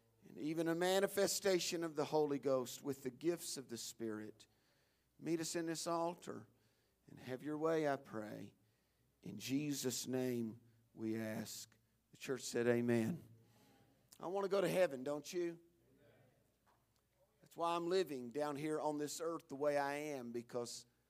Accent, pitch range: American, 120-170 Hz